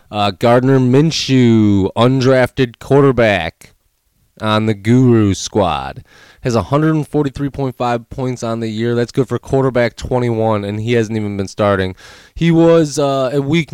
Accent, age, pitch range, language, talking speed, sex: American, 20-39, 100-125 Hz, English, 135 wpm, male